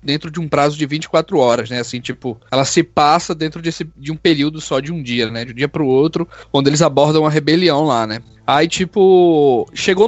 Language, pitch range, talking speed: Portuguese, 155-230 Hz, 220 wpm